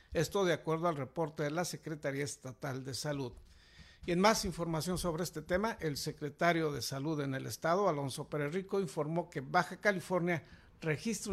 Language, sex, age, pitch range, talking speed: Spanish, male, 60-79, 150-180 Hz, 170 wpm